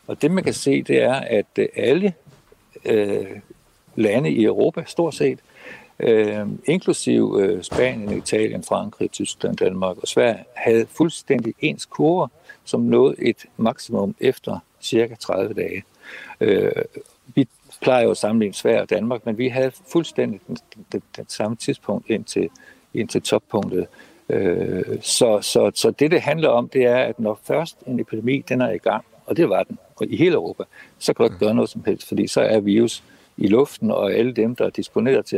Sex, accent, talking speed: male, native, 185 wpm